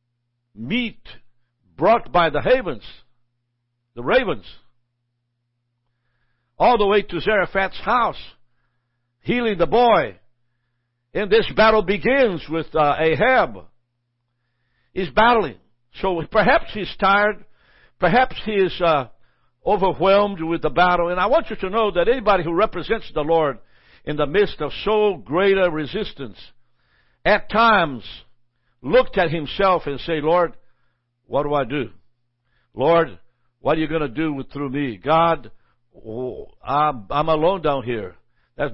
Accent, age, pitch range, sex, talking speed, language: American, 60-79, 120-195 Hz, male, 135 wpm, English